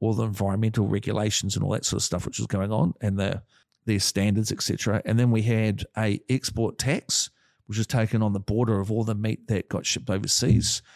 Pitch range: 105-120 Hz